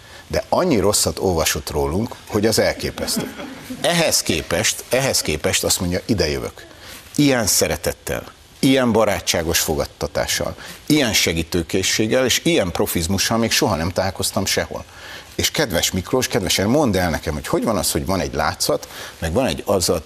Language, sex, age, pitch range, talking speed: Hungarian, male, 60-79, 75-95 Hz, 145 wpm